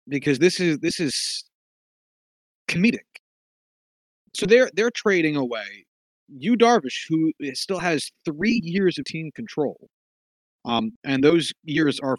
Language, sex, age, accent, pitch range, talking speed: English, male, 30-49, American, 155-245 Hz, 130 wpm